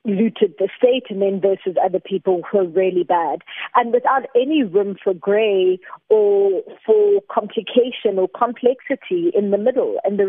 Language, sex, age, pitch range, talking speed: English, female, 30-49, 185-220 Hz, 165 wpm